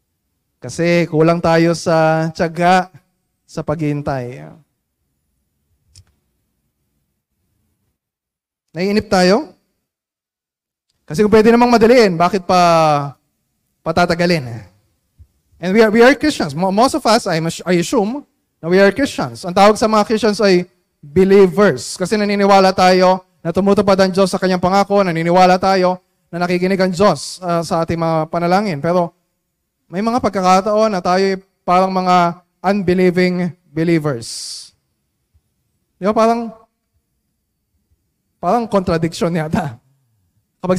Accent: native